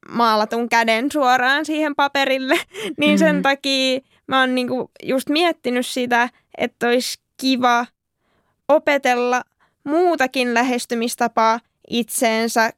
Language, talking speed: Finnish, 95 wpm